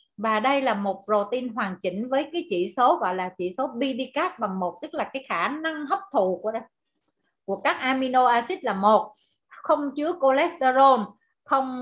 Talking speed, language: 185 wpm, Vietnamese